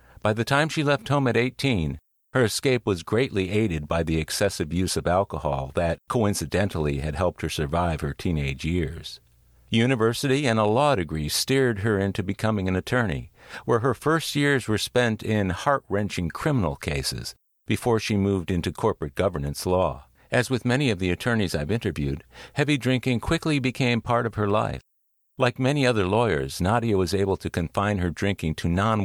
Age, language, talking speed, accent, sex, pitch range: 50-69, English, 180 wpm, American, male, 80-115 Hz